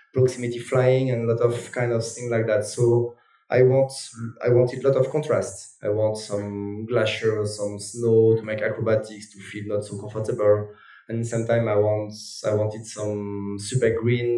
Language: English